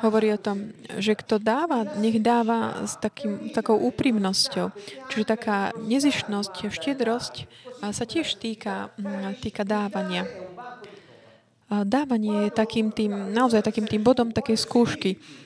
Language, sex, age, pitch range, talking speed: Slovak, female, 20-39, 210-250 Hz, 120 wpm